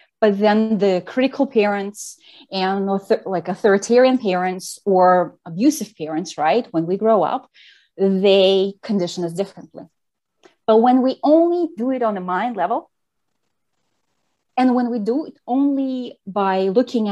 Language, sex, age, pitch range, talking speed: English, female, 30-49, 180-230 Hz, 135 wpm